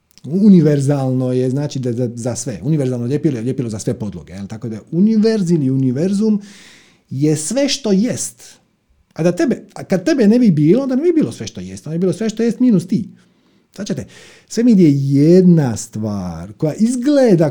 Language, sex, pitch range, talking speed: Croatian, male, 120-185 Hz, 185 wpm